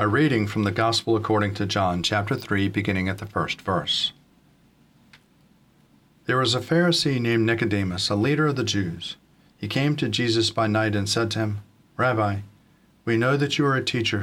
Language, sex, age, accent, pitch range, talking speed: English, male, 40-59, American, 100-115 Hz, 185 wpm